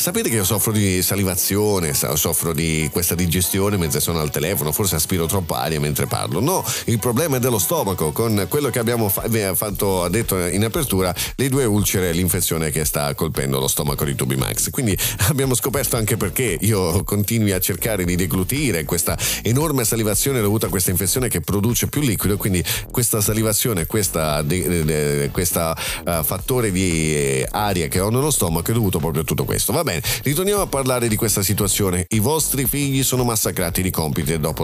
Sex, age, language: male, 40-59, Italian